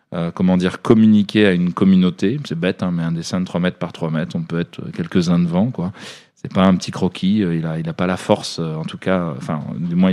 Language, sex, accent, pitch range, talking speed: French, male, French, 90-105 Hz, 260 wpm